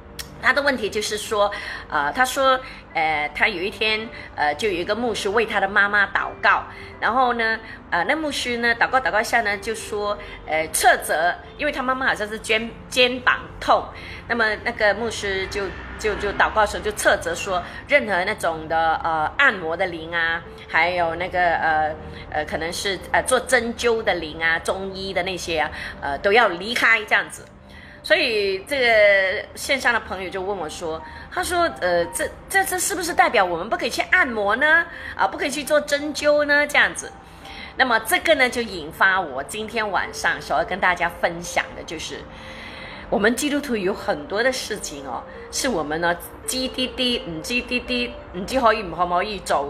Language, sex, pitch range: Chinese, female, 180-255 Hz